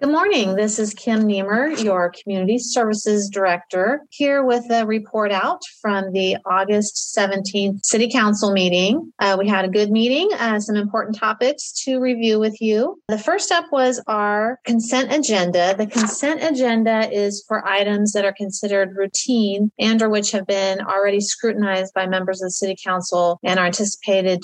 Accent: American